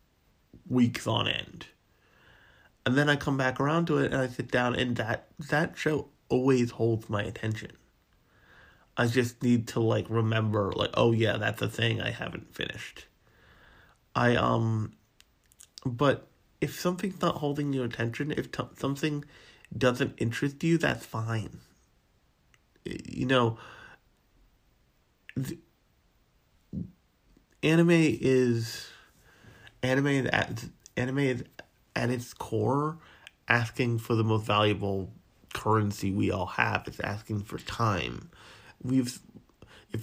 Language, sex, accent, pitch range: English, male, American, 110-130 Hz